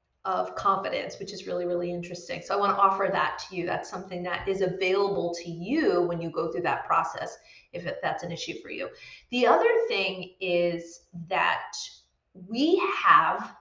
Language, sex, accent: English, female, American